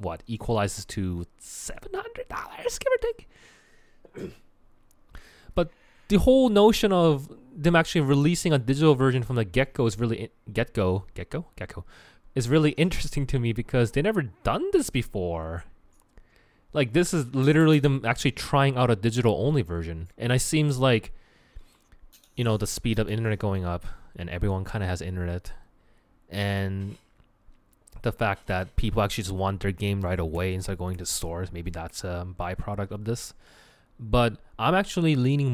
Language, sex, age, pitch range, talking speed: English, male, 20-39, 95-135 Hz, 165 wpm